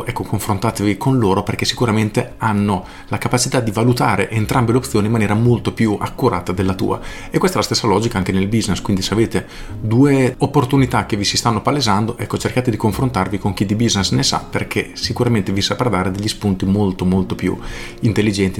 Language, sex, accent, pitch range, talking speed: Italian, male, native, 95-120 Hz, 195 wpm